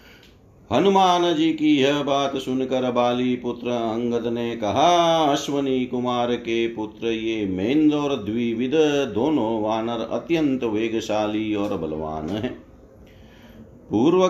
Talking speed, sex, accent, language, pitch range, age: 115 wpm, male, native, Hindi, 120-155 Hz, 50-69